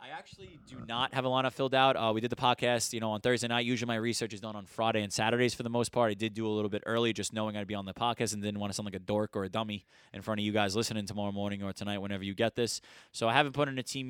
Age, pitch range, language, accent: 20-39, 100-120 Hz, English, American